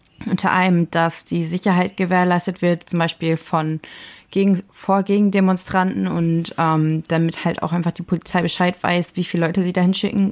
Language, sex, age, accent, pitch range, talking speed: German, female, 30-49, German, 165-190 Hz, 175 wpm